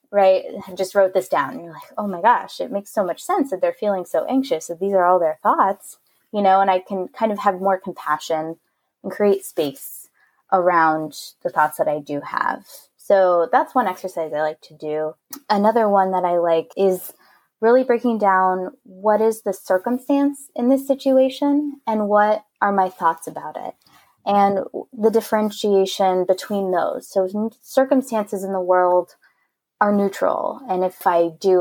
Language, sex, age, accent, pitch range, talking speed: English, female, 20-39, American, 175-220 Hz, 180 wpm